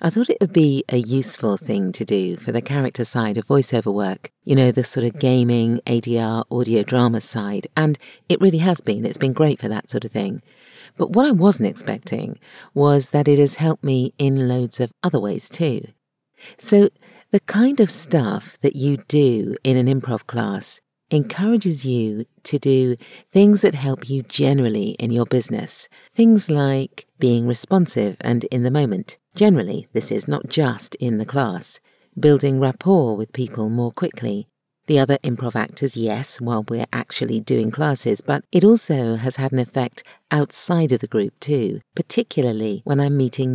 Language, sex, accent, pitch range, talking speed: English, female, British, 120-170 Hz, 180 wpm